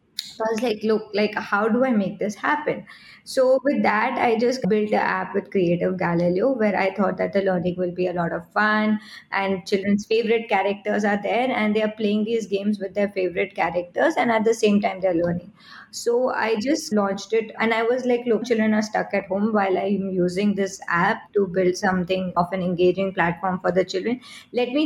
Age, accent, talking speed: 20-39, Indian, 215 wpm